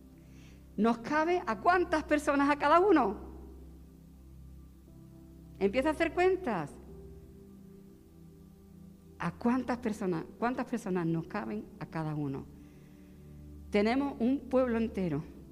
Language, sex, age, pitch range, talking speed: Spanish, female, 50-69, 150-210 Hz, 95 wpm